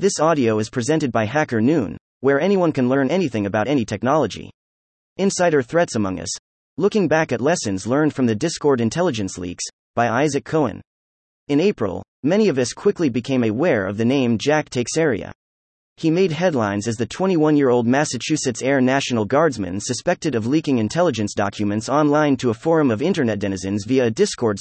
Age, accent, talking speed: 30-49, American, 175 wpm